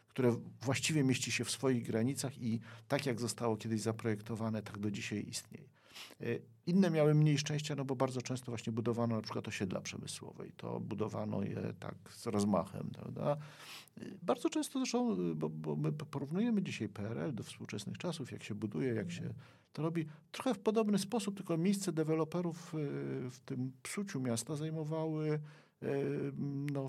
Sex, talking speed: male, 155 wpm